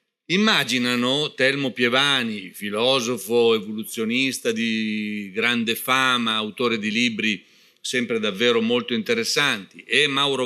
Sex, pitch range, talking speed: male, 115-170 Hz, 100 wpm